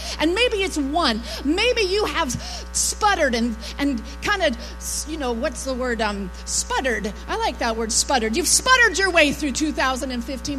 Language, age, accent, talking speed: English, 40-59, American, 170 wpm